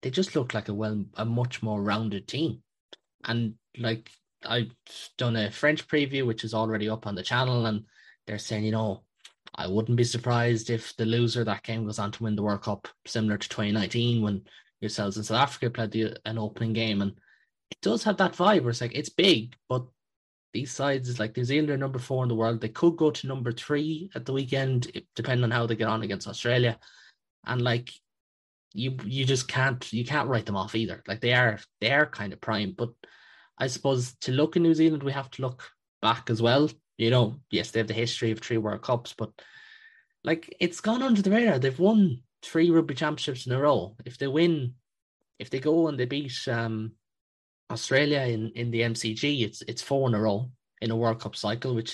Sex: male